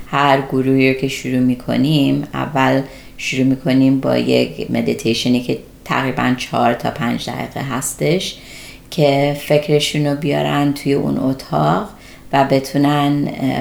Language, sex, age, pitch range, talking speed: Persian, female, 30-49, 130-155 Hz, 125 wpm